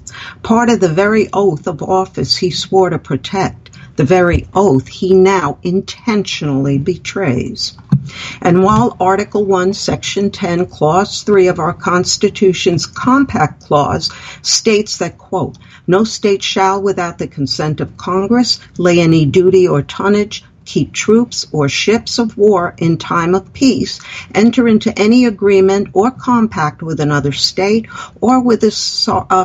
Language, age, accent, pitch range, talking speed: English, 50-69, American, 150-195 Hz, 145 wpm